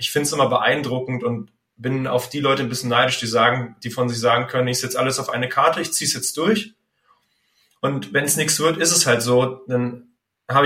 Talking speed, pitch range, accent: 240 wpm, 125-150 Hz, German